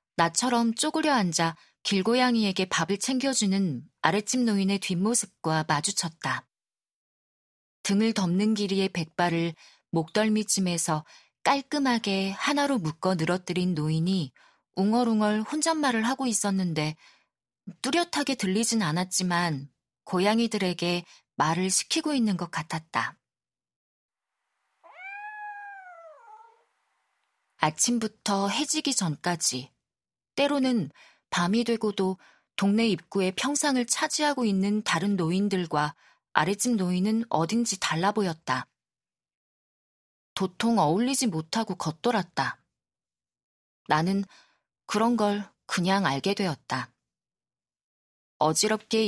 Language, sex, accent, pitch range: Korean, female, native, 175-235 Hz